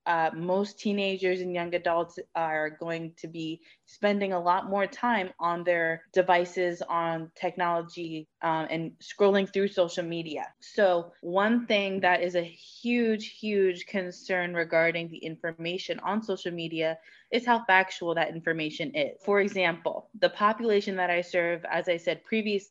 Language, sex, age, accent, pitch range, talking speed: English, female, 20-39, American, 165-195 Hz, 155 wpm